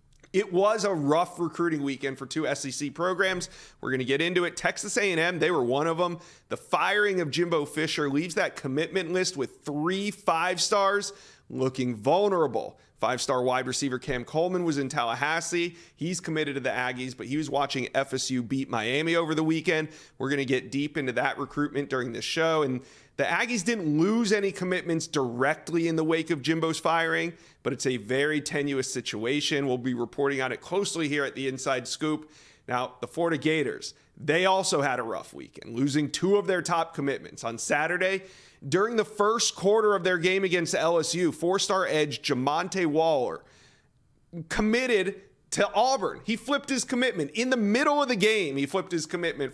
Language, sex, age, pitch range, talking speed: English, male, 30-49, 140-180 Hz, 185 wpm